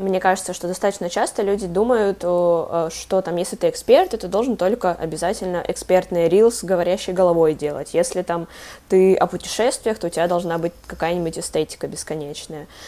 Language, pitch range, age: Russian, 165-195 Hz, 20-39